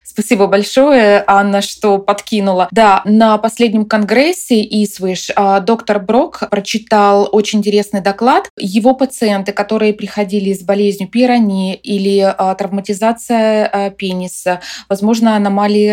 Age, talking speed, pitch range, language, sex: 20-39, 105 wpm, 195-230 Hz, Russian, female